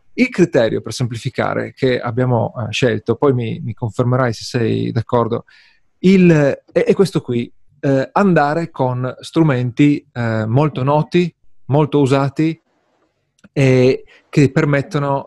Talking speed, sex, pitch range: 120 wpm, male, 120-150 Hz